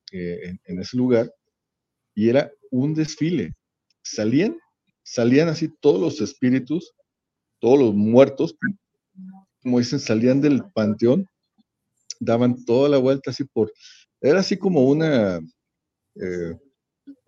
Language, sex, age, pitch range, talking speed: Spanish, male, 50-69, 110-170 Hz, 115 wpm